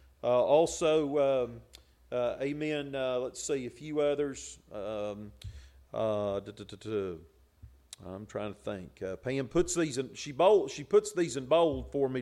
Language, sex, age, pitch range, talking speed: English, male, 40-59, 125-170 Hz, 130 wpm